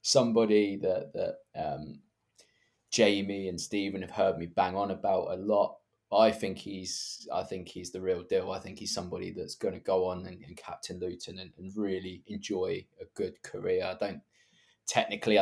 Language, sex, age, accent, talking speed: English, male, 20-39, British, 185 wpm